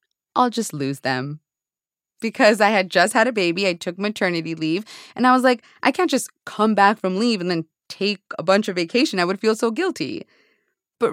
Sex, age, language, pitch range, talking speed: female, 20-39, English, 195-270 Hz, 210 wpm